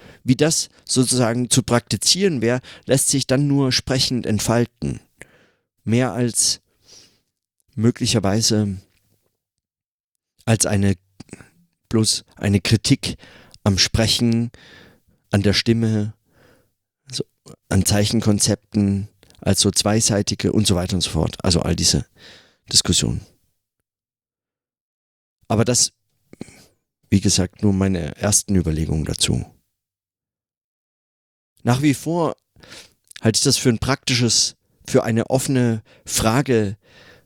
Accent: German